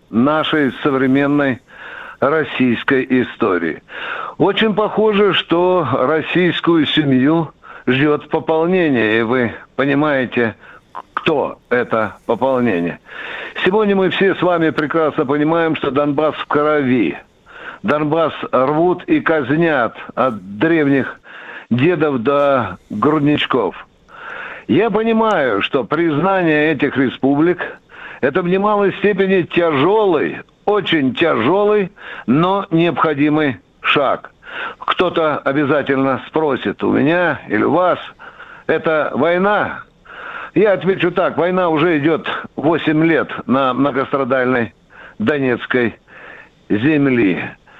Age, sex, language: 60-79, male, Russian